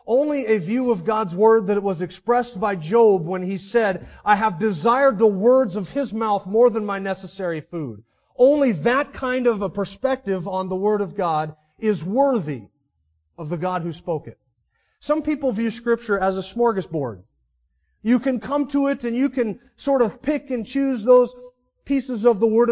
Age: 30-49